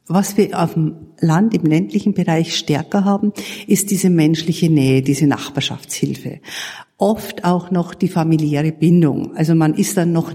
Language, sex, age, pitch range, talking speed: German, female, 50-69, 165-210 Hz, 155 wpm